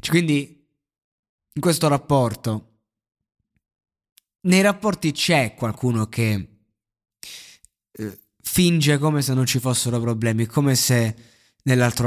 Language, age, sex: Italian, 20-39, male